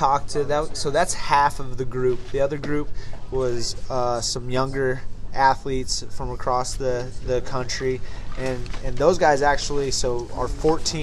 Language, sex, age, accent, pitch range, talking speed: English, male, 20-39, American, 110-130 Hz, 160 wpm